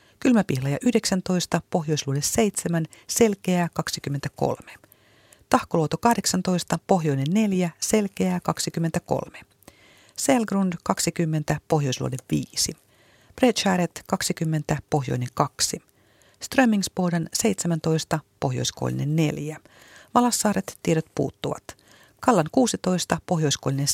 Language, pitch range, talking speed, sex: Finnish, 155-205 Hz, 75 wpm, female